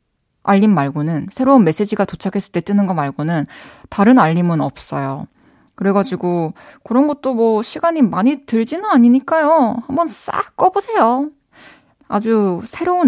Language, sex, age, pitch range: Korean, female, 20-39, 185-280 Hz